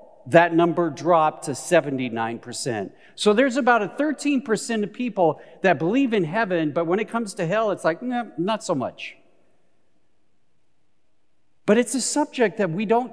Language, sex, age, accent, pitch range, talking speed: English, male, 50-69, American, 160-230 Hz, 155 wpm